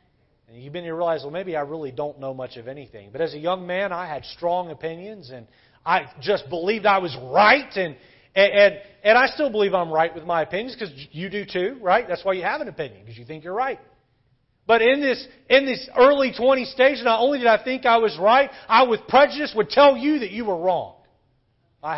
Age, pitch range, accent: 40-59, 125-175 Hz, American